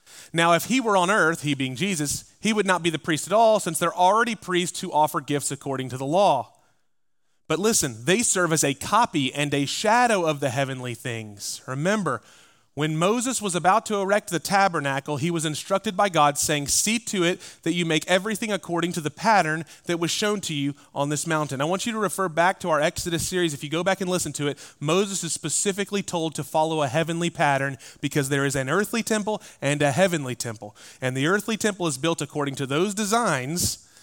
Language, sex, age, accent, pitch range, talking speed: English, male, 30-49, American, 135-180 Hz, 215 wpm